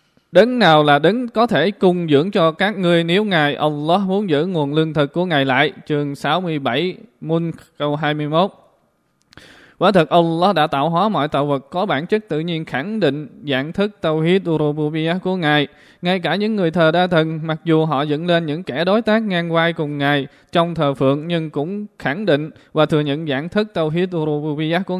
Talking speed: 200 wpm